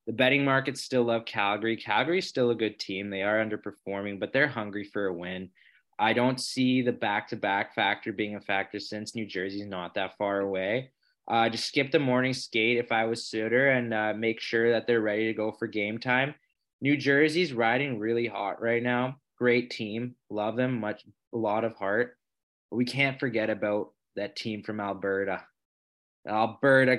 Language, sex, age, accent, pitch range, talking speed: English, male, 20-39, American, 105-130 Hz, 195 wpm